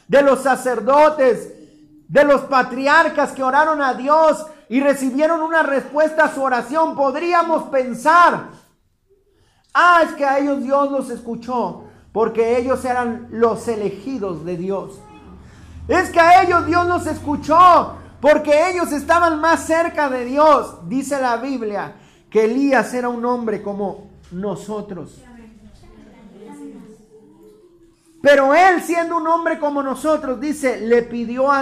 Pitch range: 225-310 Hz